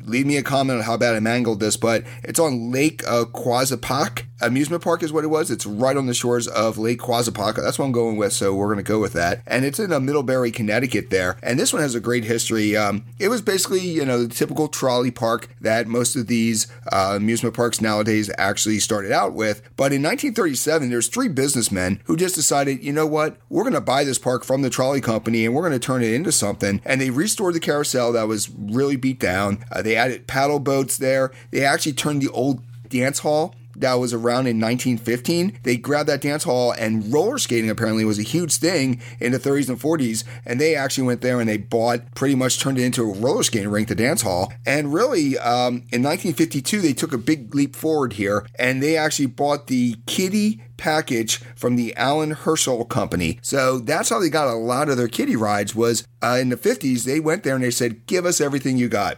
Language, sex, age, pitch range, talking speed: English, male, 30-49, 115-140 Hz, 230 wpm